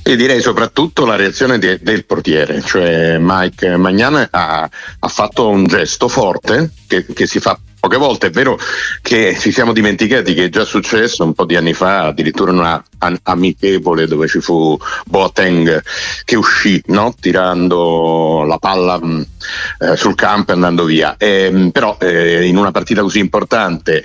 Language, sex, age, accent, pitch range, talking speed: Italian, male, 60-79, native, 90-120 Hz, 170 wpm